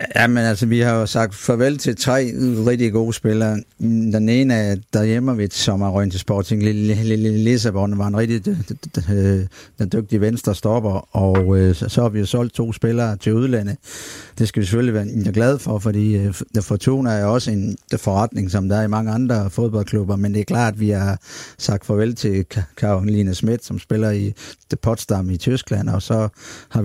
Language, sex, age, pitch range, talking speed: Danish, male, 50-69, 100-120 Hz, 175 wpm